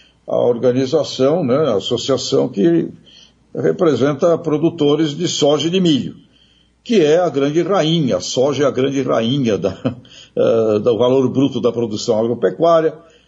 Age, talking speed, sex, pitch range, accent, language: 60-79, 135 wpm, male, 130-170 Hz, Brazilian, Portuguese